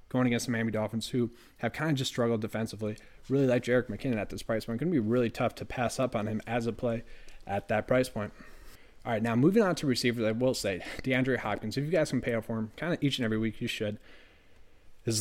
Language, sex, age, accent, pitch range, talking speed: English, male, 20-39, American, 110-130 Hz, 265 wpm